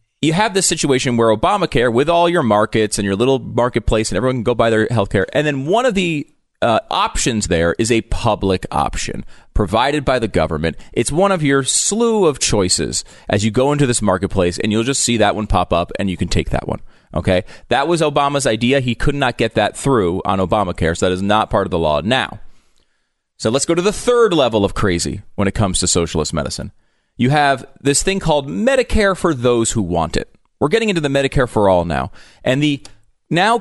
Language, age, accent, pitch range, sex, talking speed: English, 30-49, American, 100-145 Hz, male, 220 wpm